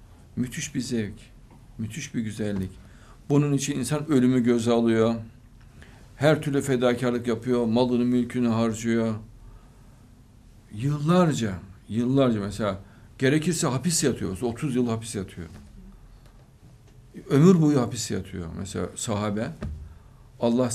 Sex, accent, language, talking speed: male, native, Turkish, 105 wpm